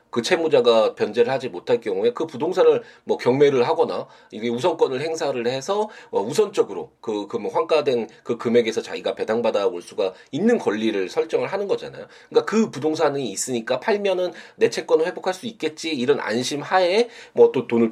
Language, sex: Korean, male